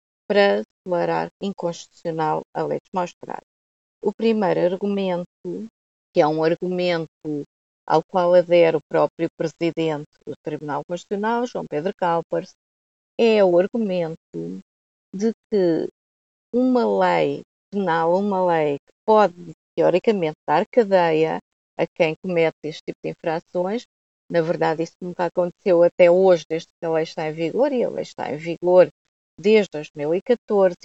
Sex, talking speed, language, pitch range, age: female, 135 wpm, Portuguese, 165-205 Hz, 30-49